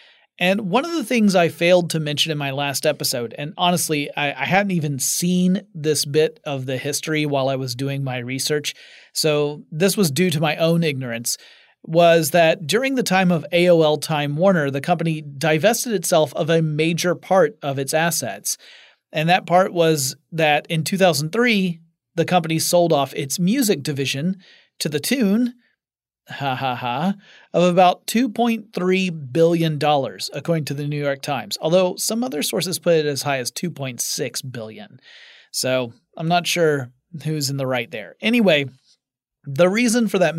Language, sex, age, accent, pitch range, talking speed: English, male, 30-49, American, 145-185 Hz, 170 wpm